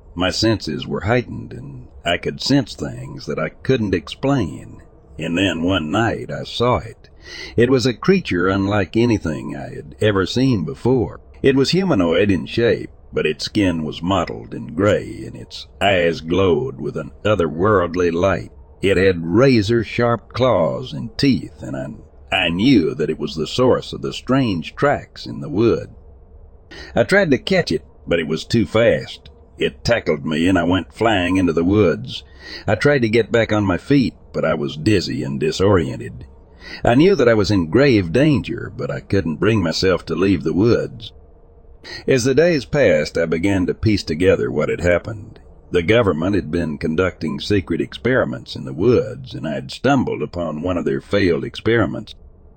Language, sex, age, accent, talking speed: English, male, 60-79, American, 180 wpm